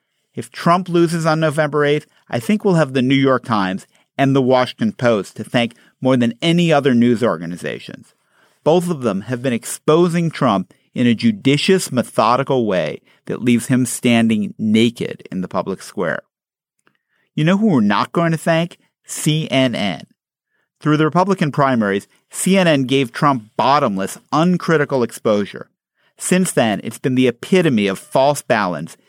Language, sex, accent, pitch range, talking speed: English, male, American, 115-165 Hz, 155 wpm